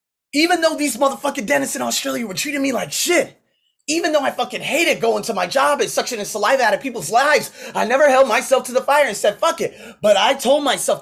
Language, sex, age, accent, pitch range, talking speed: English, male, 20-39, American, 185-275 Hz, 235 wpm